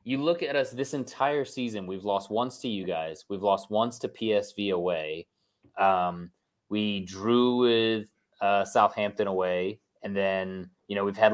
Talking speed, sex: 170 wpm, male